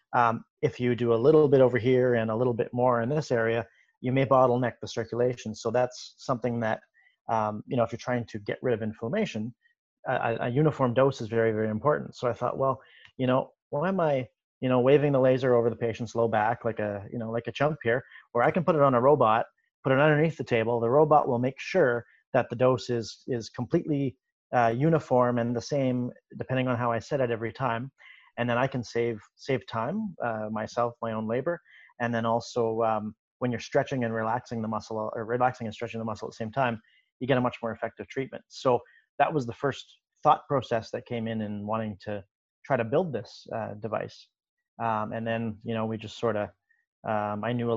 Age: 30-49